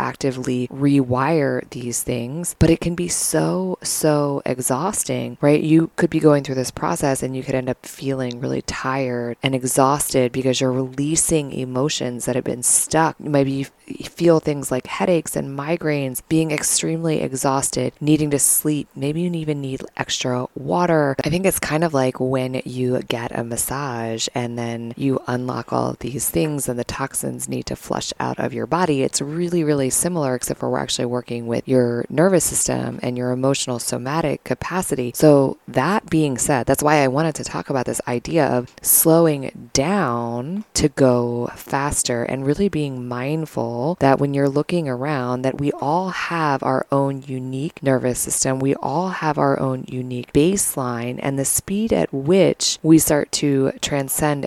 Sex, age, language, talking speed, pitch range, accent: female, 20-39, English, 175 wpm, 125-155 Hz, American